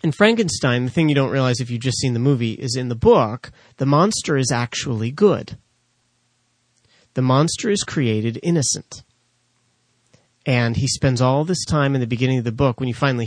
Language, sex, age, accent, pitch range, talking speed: English, male, 30-49, American, 115-135 Hz, 190 wpm